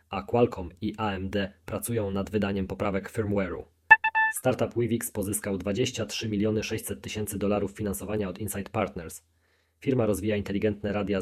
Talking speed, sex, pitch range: 130 wpm, male, 95-110 Hz